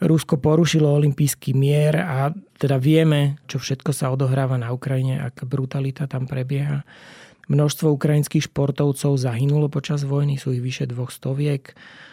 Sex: male